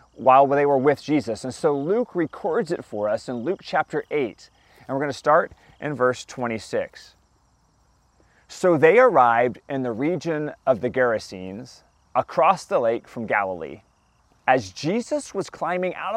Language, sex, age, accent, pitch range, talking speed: English, male, 30-49, American, 120-180 Hz, 160 wpm